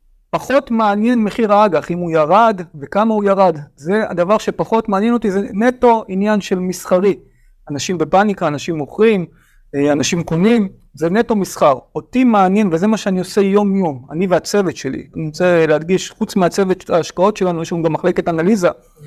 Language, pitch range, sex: Hebrew, 160-215 Hz, male